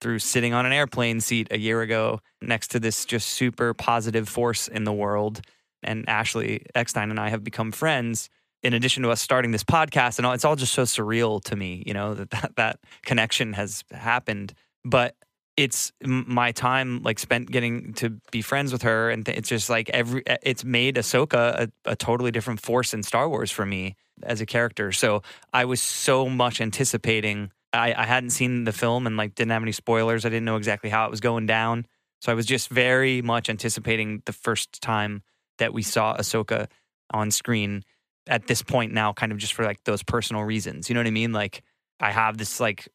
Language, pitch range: English, 105-120 Hz